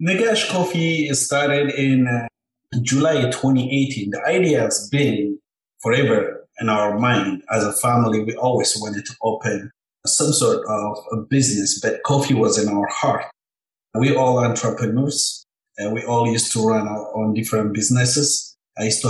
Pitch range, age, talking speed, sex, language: 110-145 Hz, 50-69, 155 wpm, male, English